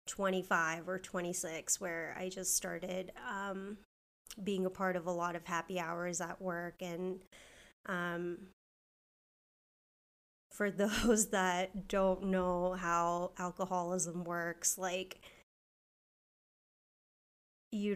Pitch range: 180-195 Hz